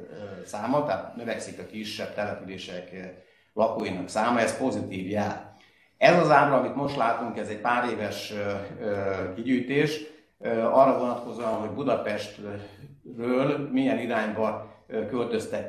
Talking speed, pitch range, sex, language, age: 110 wpm, 105-120 Hz, male, Hungarian, 60-79